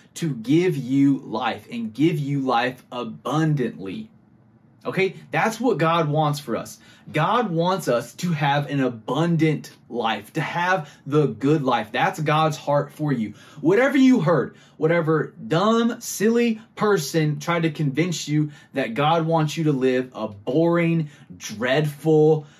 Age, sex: 20-39, male